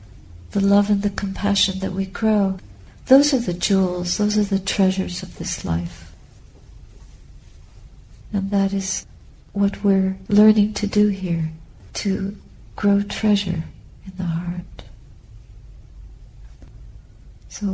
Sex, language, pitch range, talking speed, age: female, English, 125-210 Hz, 120 wpm, 60-79